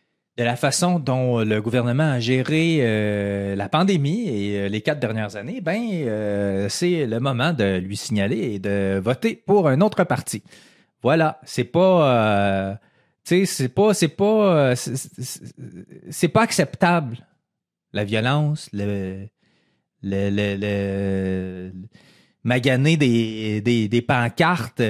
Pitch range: 105-165 Hz